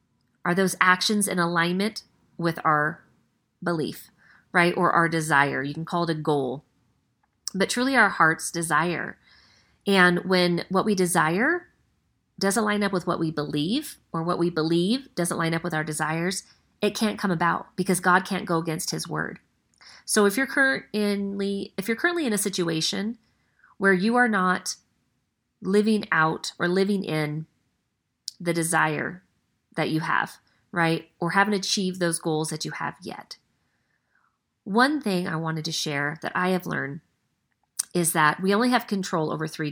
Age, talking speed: 30-49, 160 wpm